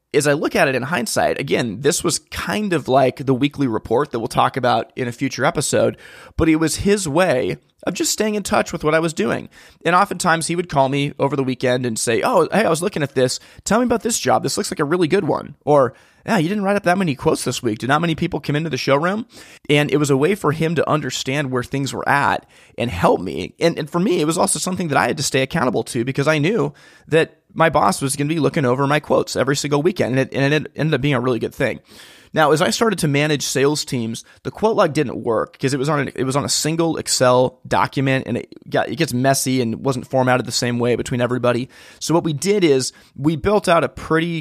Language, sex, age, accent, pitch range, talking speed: English, male, 30-49, American, 125-160 Hz, 265 wpm